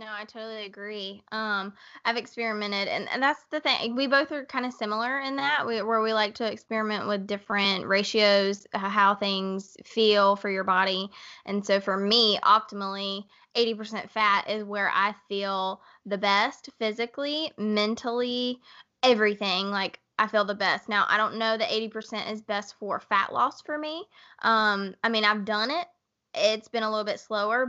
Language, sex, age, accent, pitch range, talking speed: English, female, 20-39, American, 200-240 Hz, 175 wpm